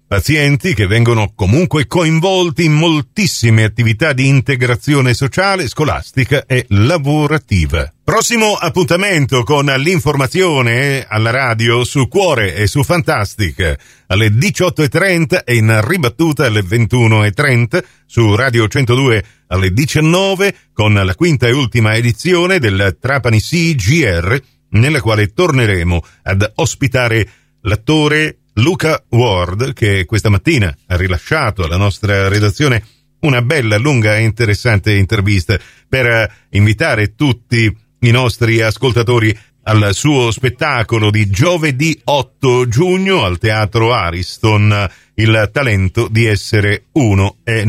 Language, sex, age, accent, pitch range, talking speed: Italian, male, 50-69, native, 105-145 Hz, 115 wpm